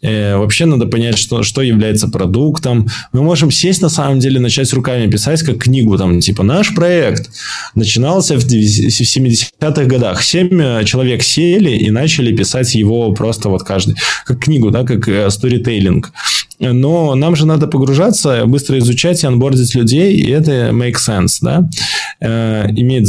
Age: 20-39